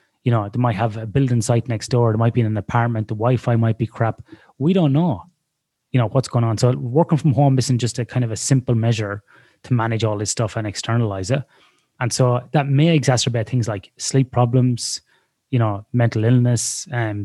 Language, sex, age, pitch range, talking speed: English, male, 20-39, 115-130 Hz, 220 wpm